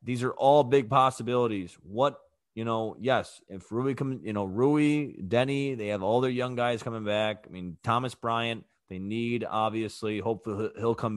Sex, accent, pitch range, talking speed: male, American, 105-145 Hz, 175 wpm